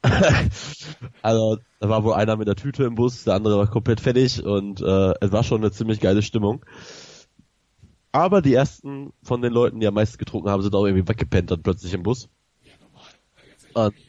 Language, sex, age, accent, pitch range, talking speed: German, male, 20-39, German, 105-125 Hz, 185 wpm